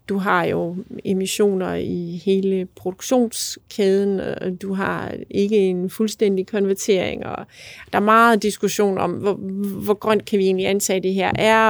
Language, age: Danish, 30-49